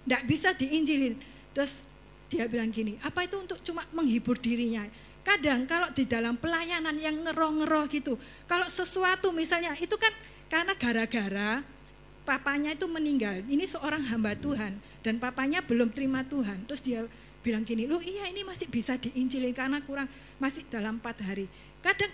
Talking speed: 155 wpm